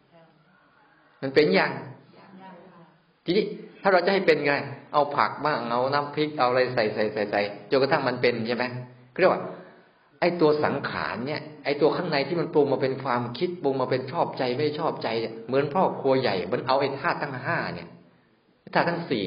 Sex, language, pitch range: male, Thai, 130-185 Hz